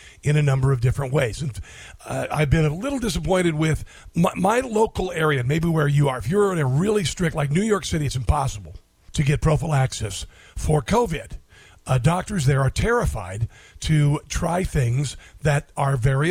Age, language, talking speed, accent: 50-69, English, 180 wpm, American